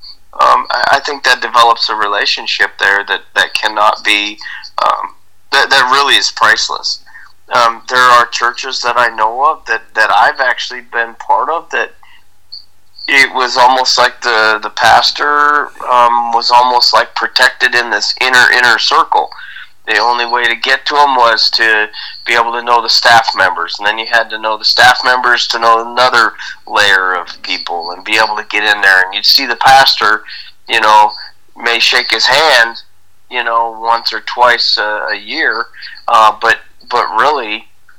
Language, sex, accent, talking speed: English, male, American, 175 wpm